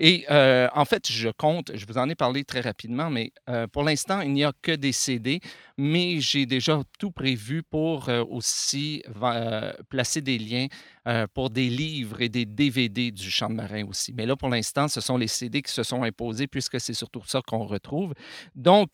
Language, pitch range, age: French, 120-155 Hz, 50-69